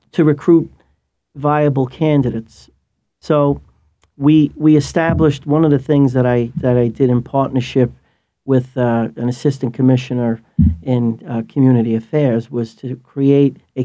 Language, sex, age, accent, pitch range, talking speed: Polish, male, 40-59, American, 120-140 Hz, 140 wpm